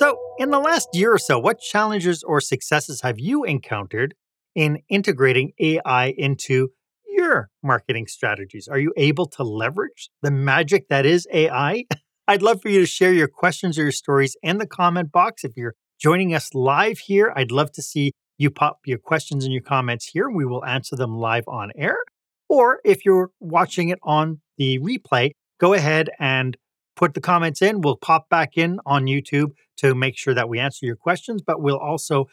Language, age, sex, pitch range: English, 40-59, male, 135-180 Hz